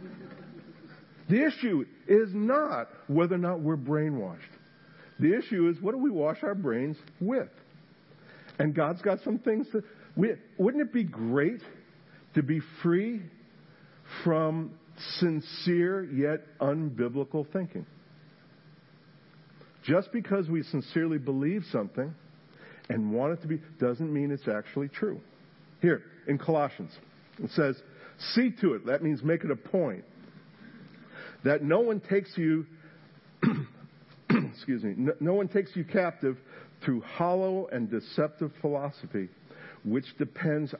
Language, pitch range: English, 150-185 Hz